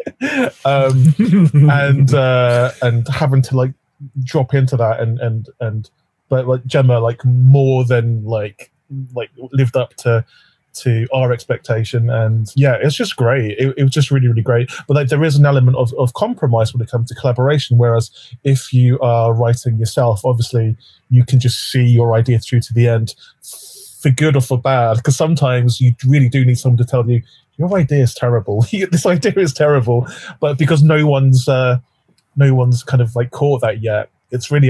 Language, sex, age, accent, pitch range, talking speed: English, male, 20-39, British, 115-135 Hz, 185 wpm